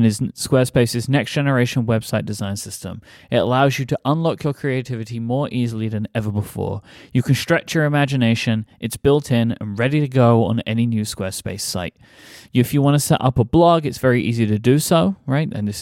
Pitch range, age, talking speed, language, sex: 105-130 Hz, 30-49, 200 wpm, English, male